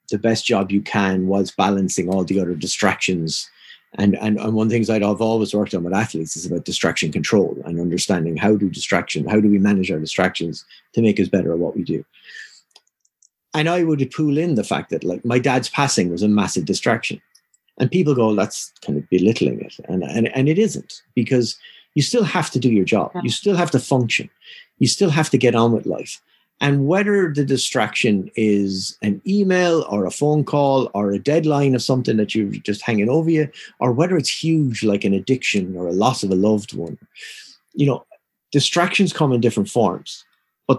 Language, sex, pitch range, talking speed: English, male, 100-140 Hz, 210 wpm